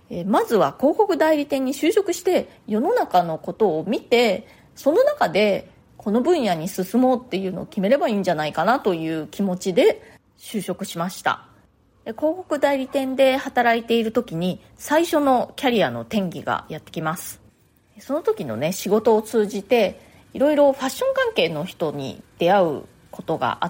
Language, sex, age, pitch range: Japanese, female, 30-49, 185-295 Hz